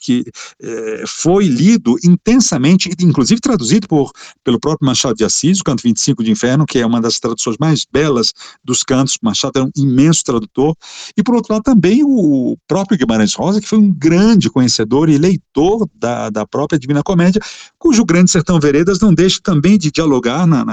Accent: Brazilian